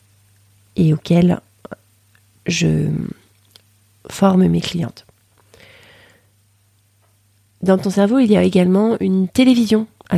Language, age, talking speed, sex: French, 30-49, 95 wpm, female